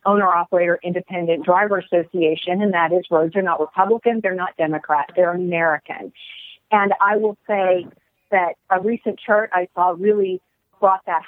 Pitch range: 170-205 Hz